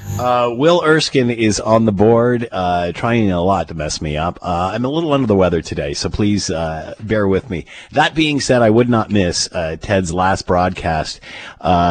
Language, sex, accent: English, male, American